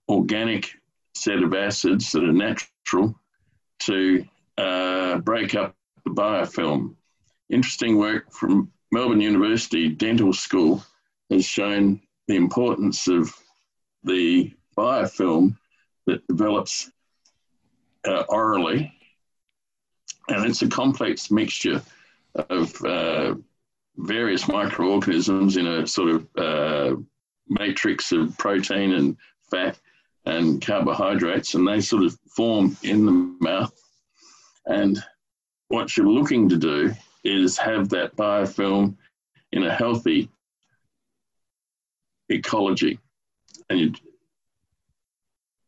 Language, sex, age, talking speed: English, male, 50-69, 100 wpm